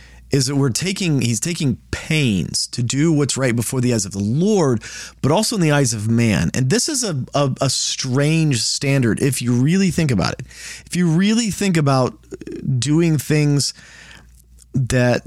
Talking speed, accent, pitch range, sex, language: 180 wpm, American, 115-145 Hz, male, English